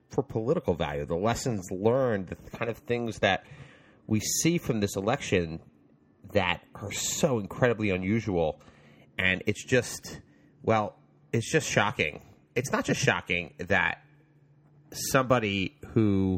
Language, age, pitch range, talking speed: English, 30-49, 90-115 Hz, 130 wpm